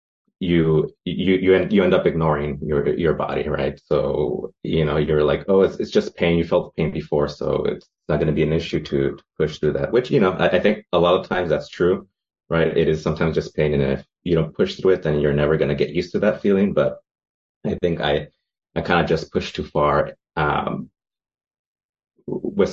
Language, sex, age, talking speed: English, male, 30-49, 225 wpm